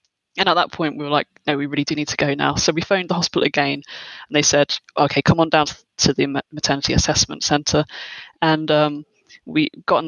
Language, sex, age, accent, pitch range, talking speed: English, female, 20-39, British, 145-175 Hz, 225 wpm